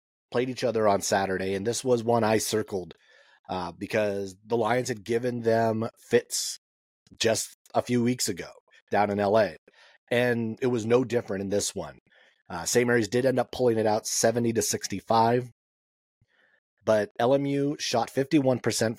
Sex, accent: male, American